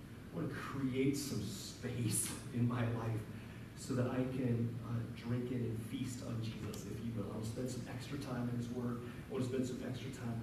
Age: 40-59